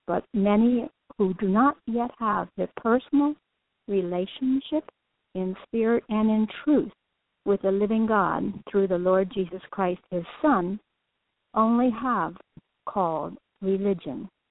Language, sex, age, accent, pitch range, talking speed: English, female, 60-79, American, 190-235 Hz, 125 wpm